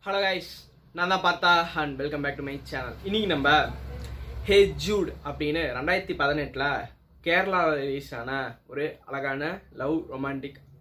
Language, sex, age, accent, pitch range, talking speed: Tamil, female, 20-39, native, 140-175 Hz, 135 wpm